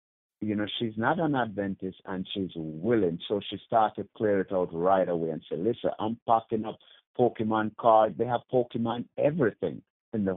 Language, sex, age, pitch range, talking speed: English, male, 50-69, 95-120 Hz, 185 wpm